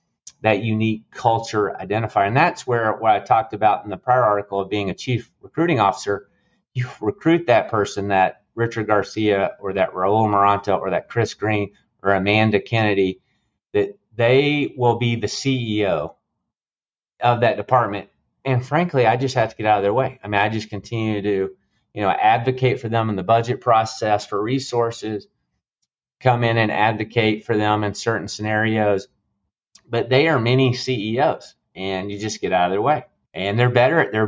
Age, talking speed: 30-49, 180 wpm